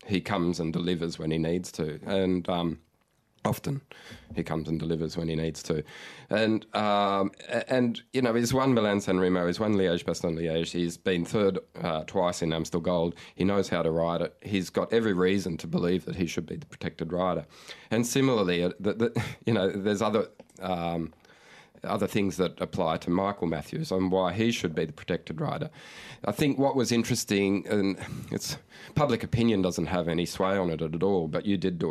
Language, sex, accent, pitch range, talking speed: English, male, Australian, 85-105 Hz, 200 wpm